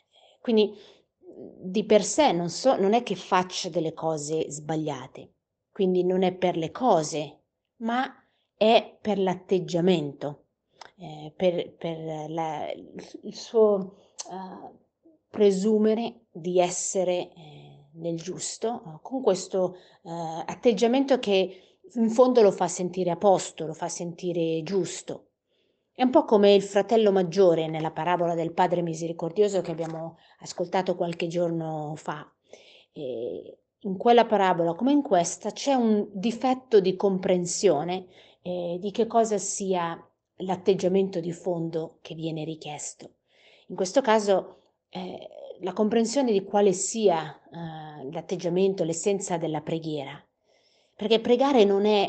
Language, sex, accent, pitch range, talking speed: Italian, female, native, 170-210 Hz, 130 wpm